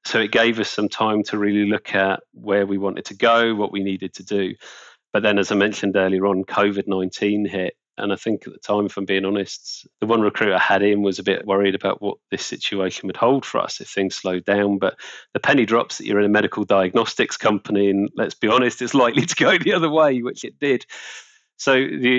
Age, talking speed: 30-49, 240 wpm